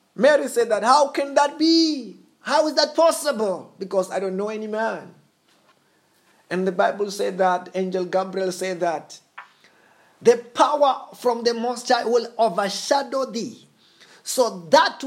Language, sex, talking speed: English, male, 145 wpm